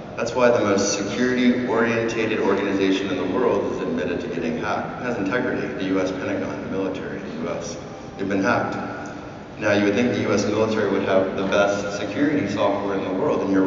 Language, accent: English, American